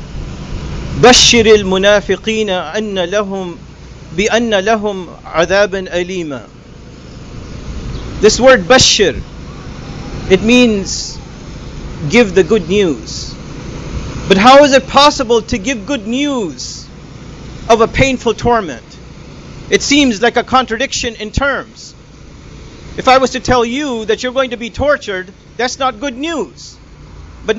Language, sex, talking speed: English, male, 115 wpm